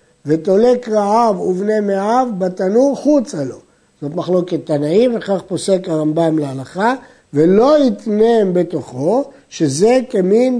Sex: male